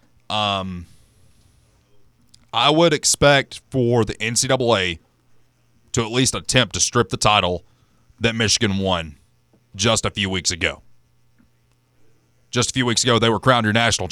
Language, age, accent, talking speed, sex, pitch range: English, 30-49, American, 140 wpm, male, 95-120 Hz